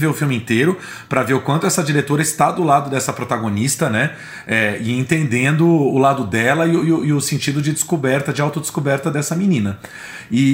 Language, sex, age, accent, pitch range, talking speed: Portuguese, male, 40-59, Brazilian, 125-170 Hz, 195 wpm